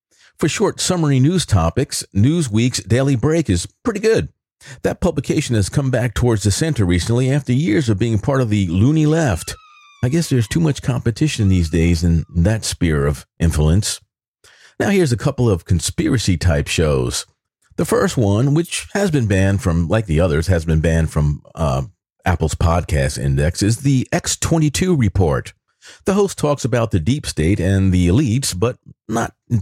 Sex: male